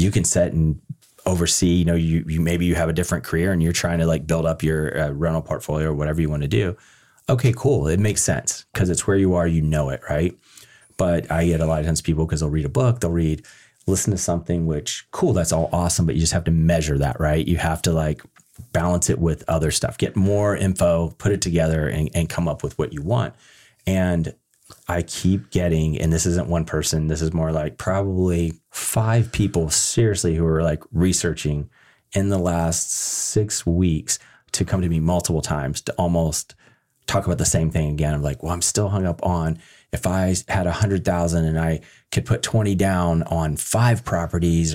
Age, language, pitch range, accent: 30-49, English, 80-95 Hz, American